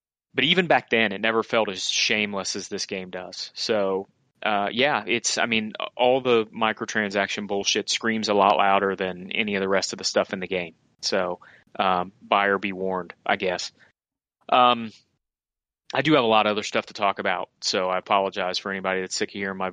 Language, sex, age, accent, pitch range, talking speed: English, male, 30-49, American, 100-125 Hz, 205 wpm